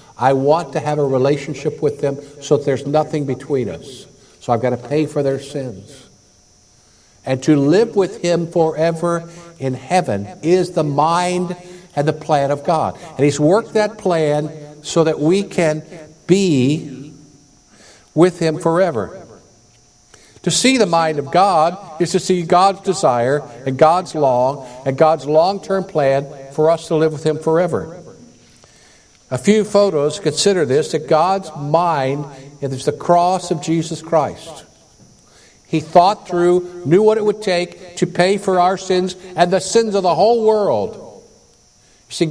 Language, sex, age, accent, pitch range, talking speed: English, male, 60-79, American, 145-185 Hz, 160 wpm